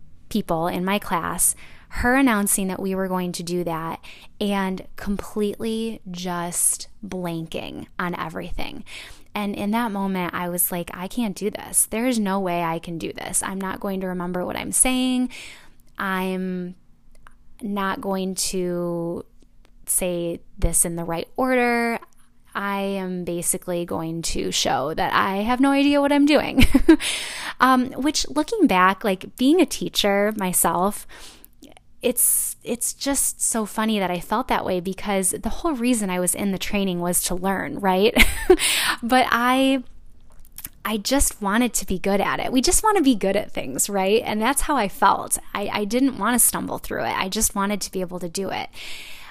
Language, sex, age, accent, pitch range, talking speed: English, female, 10-29, American, 185-245 Hz, 175 wpm